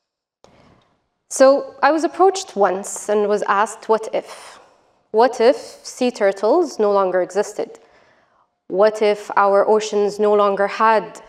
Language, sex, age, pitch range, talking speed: English, female, 20-39, 205-260 Hz, 130 wpm